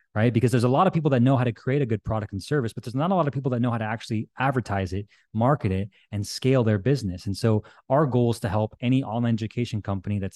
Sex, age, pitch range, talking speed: male, 20-39, 110-135 Hz, 285 wpm